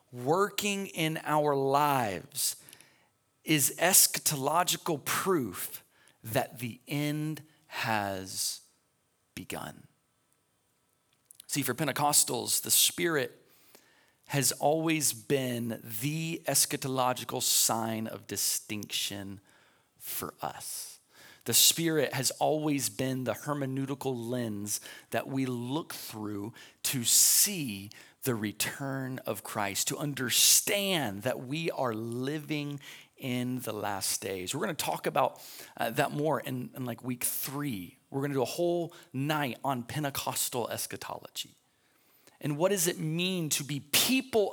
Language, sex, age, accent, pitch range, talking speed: English, male, 30-49, American, 120-155 Hz, 115 wpm